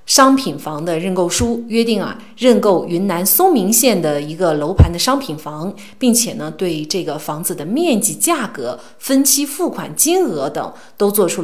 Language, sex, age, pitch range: Chinese, female, 30-49, 170-235 Hz